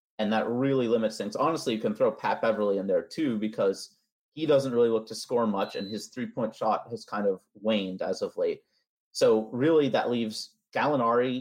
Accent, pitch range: American, 105-135 Hz